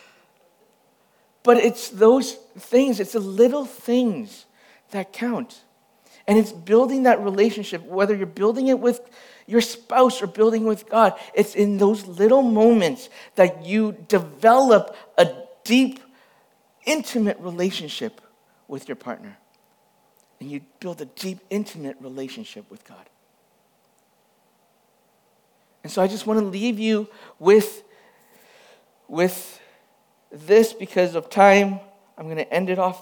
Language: English